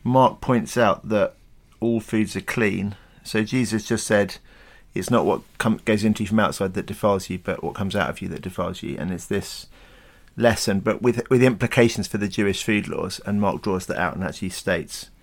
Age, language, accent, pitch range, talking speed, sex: 40-59, English, British, 95-110 Hz, 215 wpm, male